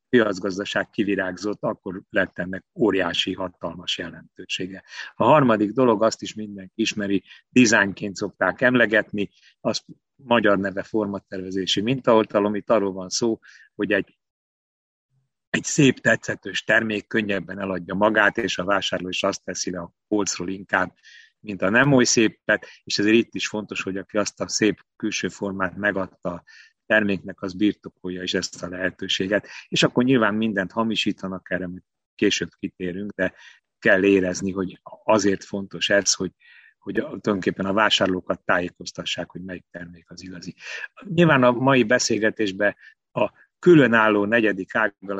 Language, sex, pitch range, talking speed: Hungarian, male, 95-110 Hz, 140 wpm